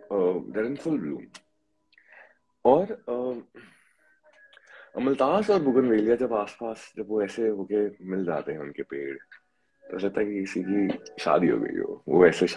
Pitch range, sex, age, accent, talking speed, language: 95-125 Hz, male, 30-49, Indian, 50 wpm, English